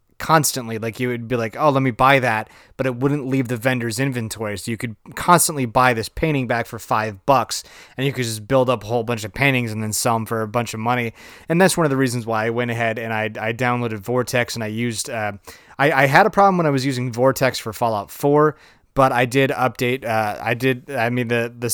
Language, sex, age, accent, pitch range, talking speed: English, male, 20-39, American, 110-130 Hz, 255 wpm